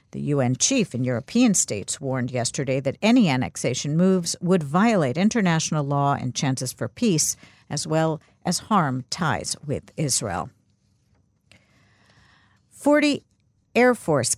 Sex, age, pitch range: female, 50-69, 140-190 Hz